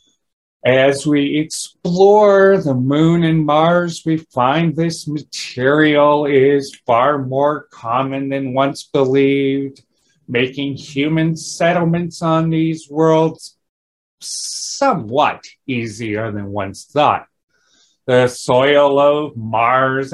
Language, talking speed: English, 100 wpm